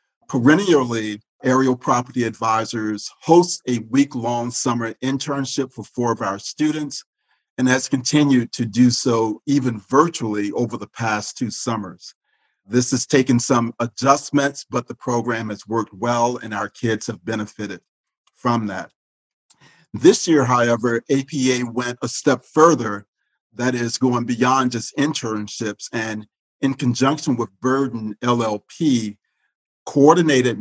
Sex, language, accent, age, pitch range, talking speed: male, English, American, 40-59, 115-135 Hz, 130 wpm